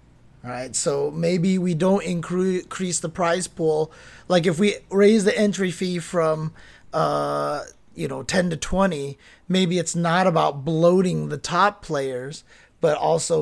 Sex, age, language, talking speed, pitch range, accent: male, 30-49, English, 150 wpm, 140-185 Hz, American